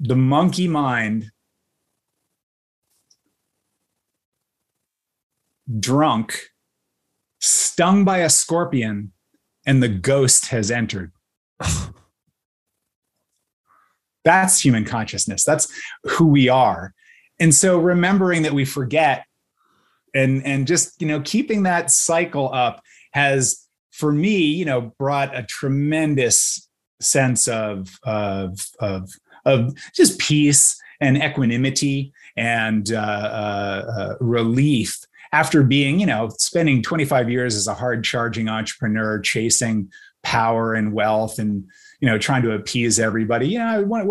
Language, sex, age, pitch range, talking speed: English, male, 30-49, 110-145 Hz, 110 wpm